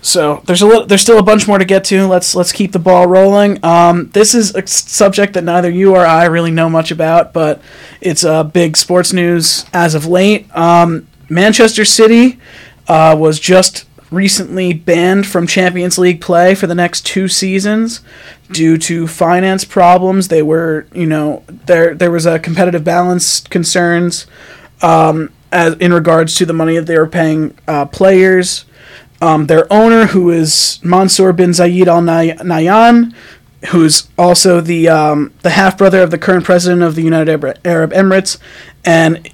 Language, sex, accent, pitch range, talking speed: English, male, American, 160-185 Hz, 175 wpm